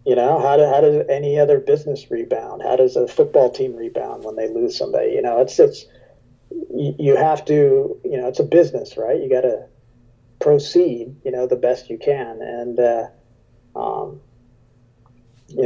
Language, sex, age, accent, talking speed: English, male, 40-59, American, 180 wpm